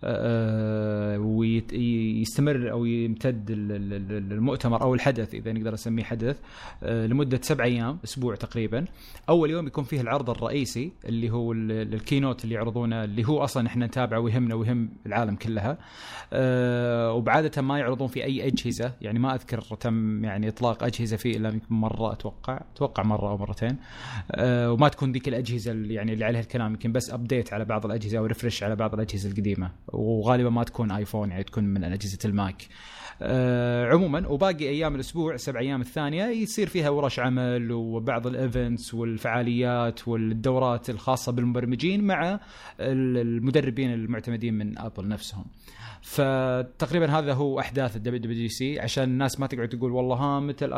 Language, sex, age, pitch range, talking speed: Arabic, male, 20-39, 115-135 Hz, 145 wpm